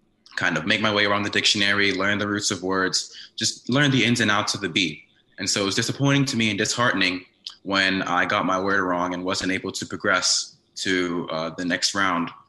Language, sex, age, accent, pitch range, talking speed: English, male, 20-39, American, 90-110 Hz, 225 wpm